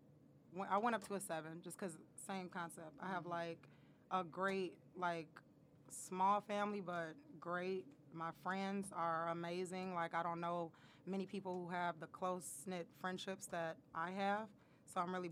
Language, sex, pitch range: English, female, 165-190 Hz